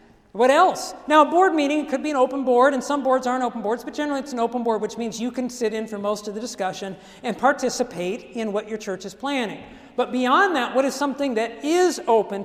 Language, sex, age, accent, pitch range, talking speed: English, male, 50-69, American, 205-285 Hz, 245 wpm